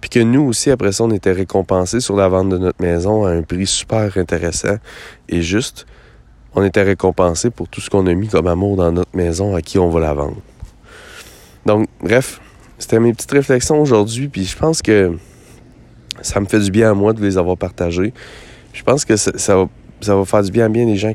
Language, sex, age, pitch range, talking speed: French, male, 30-49, 85-105 Hz, 225 wpm